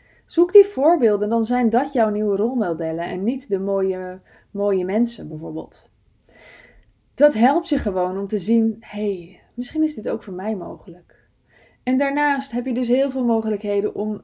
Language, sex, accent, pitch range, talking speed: Dutch, female, Dutch, 180-235 Hz, 175 wpm